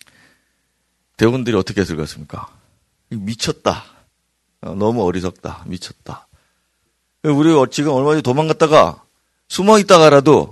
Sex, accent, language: male, native, Korean